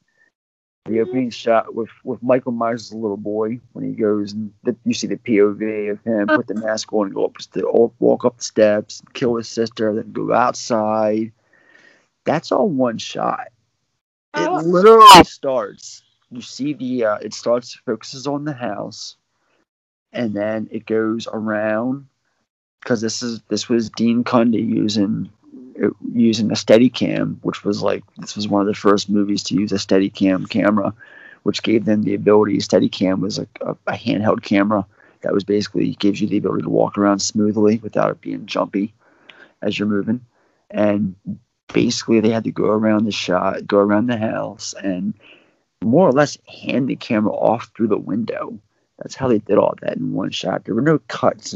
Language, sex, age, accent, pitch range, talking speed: English, male, 30-49, American, 105-115 Hz, 180 wpm